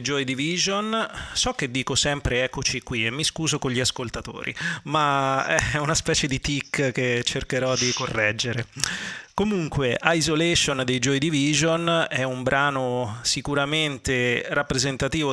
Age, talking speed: 30-49, 135 wpm